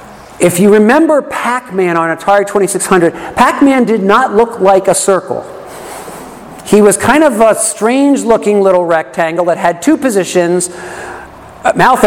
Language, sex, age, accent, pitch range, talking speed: English, male, 50-69, American, 175-235 Hz, 135 wpm